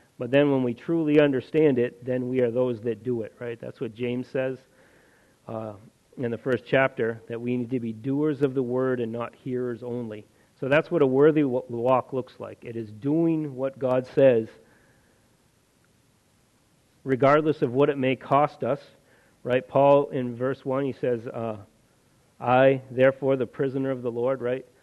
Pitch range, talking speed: 120-135 Hz, 180 wpm